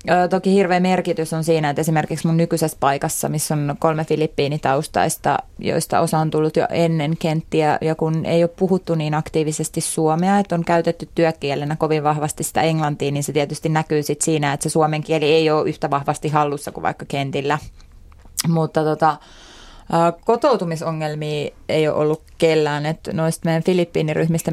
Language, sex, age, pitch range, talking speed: Finnish, female, 20-39, 150-165 Hz, 160 wpm